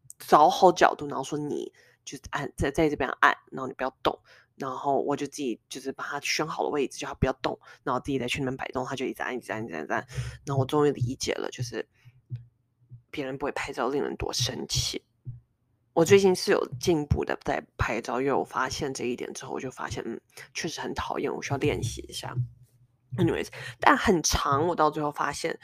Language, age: Chinese, 20-39